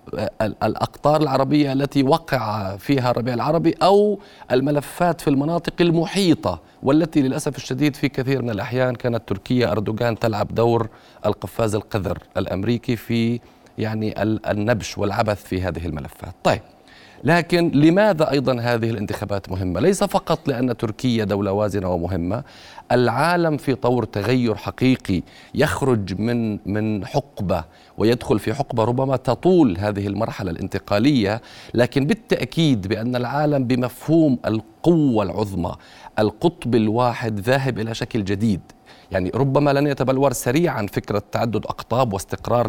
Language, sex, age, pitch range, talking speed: Arabic, male, 40-59, 105-145 Hz, 120 wpm